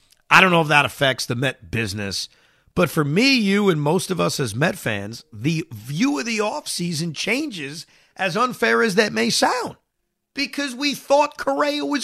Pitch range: 135-205 Hz